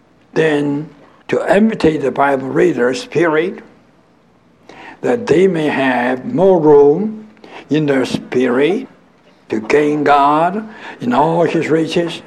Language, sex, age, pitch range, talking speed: English, male, 60-79, 145-205 Hz, 110 wpm